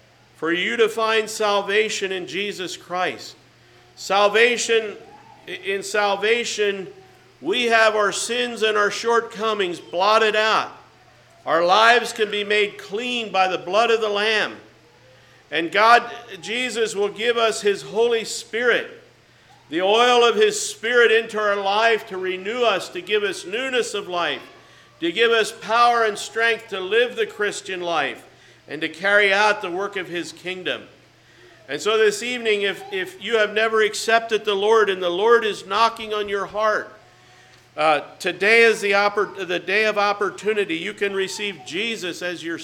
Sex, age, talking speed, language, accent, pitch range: male, 50-69, 160 wpm, English, American, 195-230 Hz